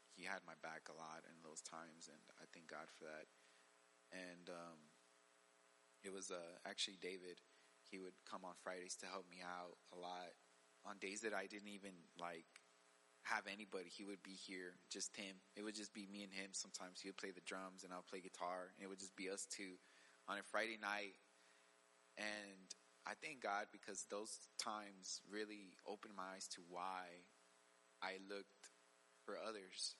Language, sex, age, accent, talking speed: English, male, 20-39, American, 190 wpm